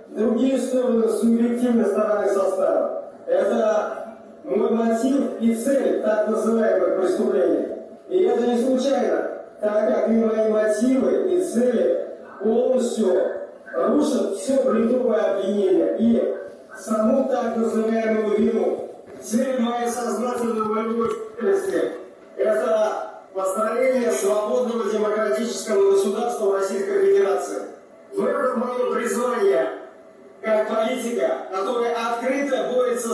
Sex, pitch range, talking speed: male, 215-255 Hz, 95 wpm